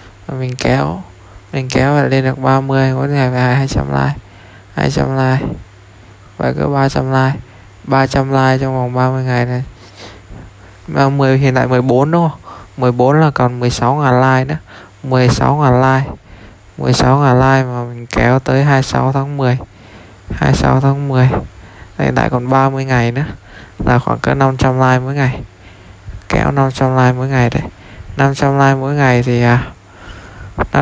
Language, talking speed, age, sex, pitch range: Vietnamese, 155 wpm, 20-39, male, 100-130 Hz